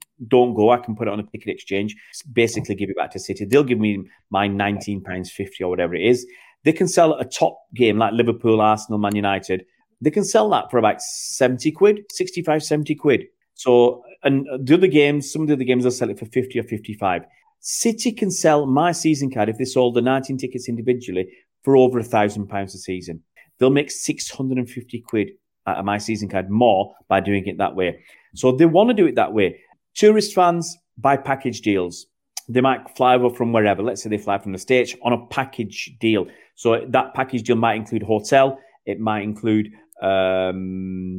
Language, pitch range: English, 105-140 Hz